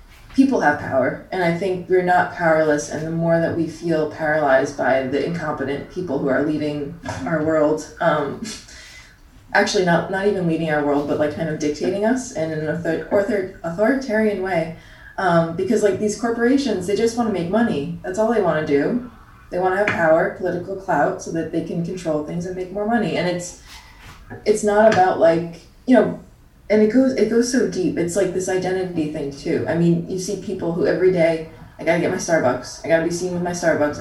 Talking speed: 215 wpm